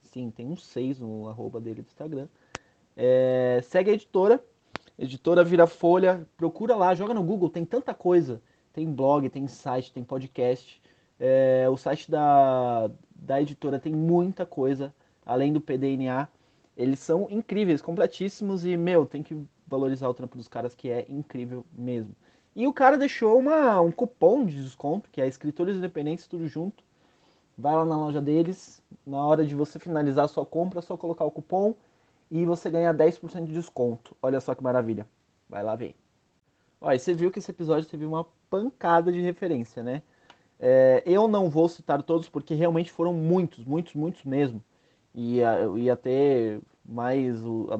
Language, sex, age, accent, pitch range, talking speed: Portuguese, male, 20-39, Brazilian, 130-170 Hz, 165 wpm